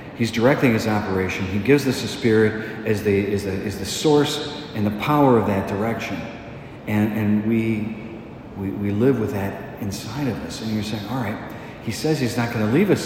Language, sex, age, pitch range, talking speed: English, male, 50-69, 110-140 Hz, 205 wpm